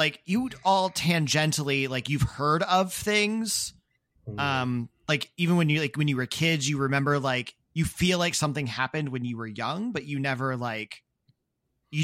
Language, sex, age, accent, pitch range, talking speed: English, male, 30-49, American, 120-155 Hz, 185 wpm